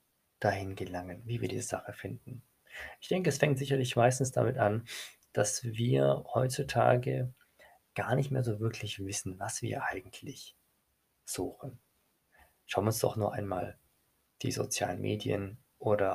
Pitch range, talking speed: 105-130 Hz, 140 wpm